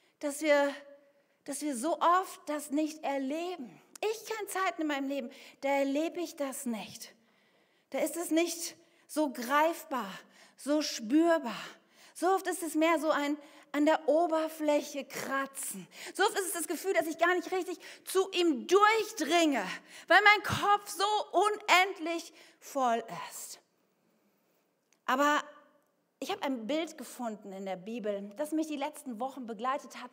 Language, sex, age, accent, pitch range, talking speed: German, female, 40-59, German, 240-320 Hz, 150 wpm